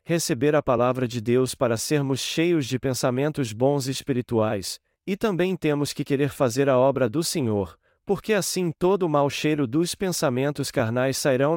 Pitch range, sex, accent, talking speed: 125-160 Hz, male, Brazilian, 165 wpm